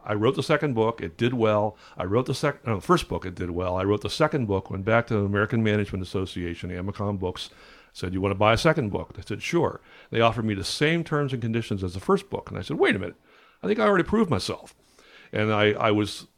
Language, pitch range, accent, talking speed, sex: English, 100-130 Hz, American, 270 wpm, male